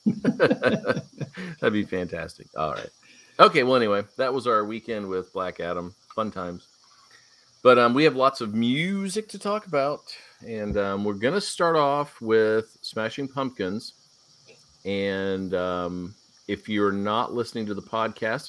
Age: 40-59